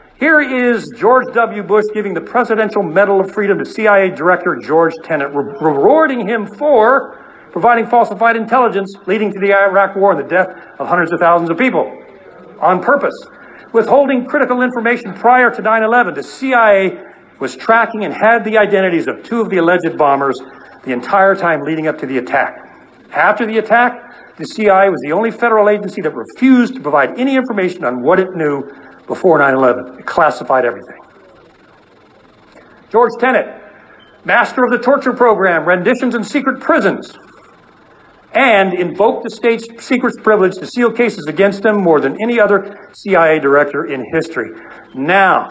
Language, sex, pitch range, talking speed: English, male, 175-235 Hz, 160 wpm